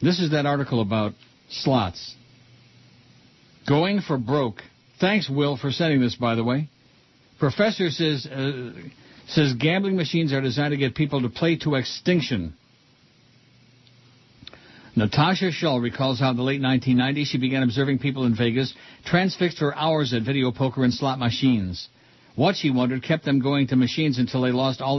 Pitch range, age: 125-145 Hz, 60-79